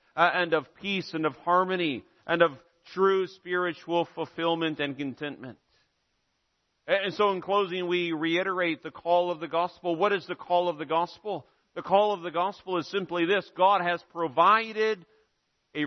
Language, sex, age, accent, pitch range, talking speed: English, male, 50-69, American, 165-205 Hz, 165 wpm